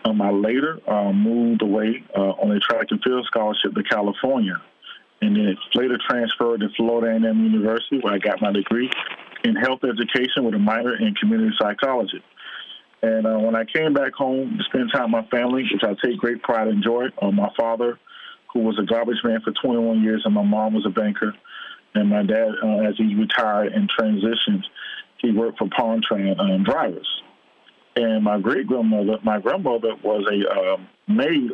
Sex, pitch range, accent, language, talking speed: male, 110-130 Hz, American, English, 195 wpm